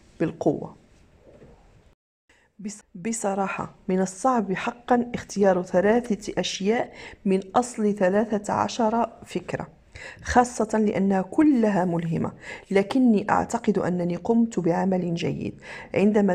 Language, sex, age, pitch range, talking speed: Arabic, female, 40-59, 180-220 Hz, 90 wpm